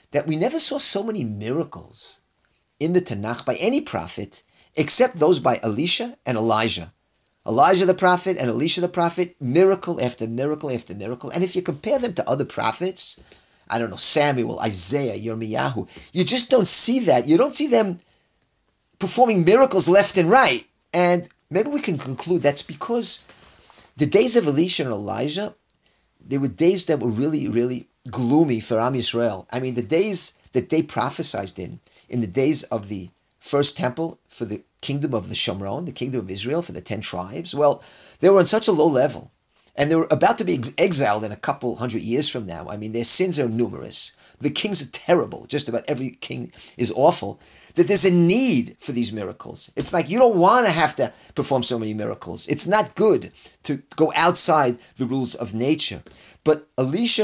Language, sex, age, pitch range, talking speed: English, male, 40-59, 120-175 Hz, 190 wpm